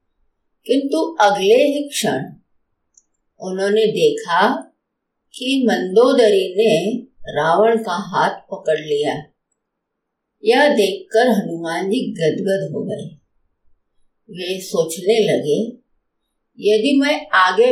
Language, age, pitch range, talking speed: Hindi, 50-69, 180-245 Hz, 90 wpm